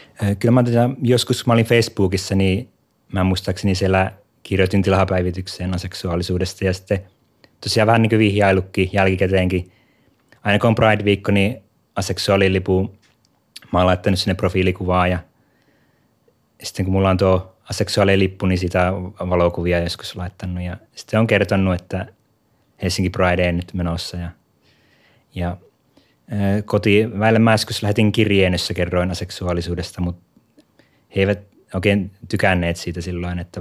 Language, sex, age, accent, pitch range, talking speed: Finnish, male, 20-39, native, 90-105 Hz, 125 wpm